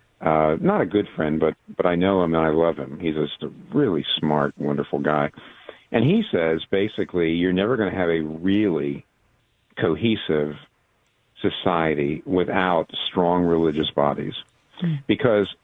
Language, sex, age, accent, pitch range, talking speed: English, male, 50-69, American, 80-95 Hz, 150 wpm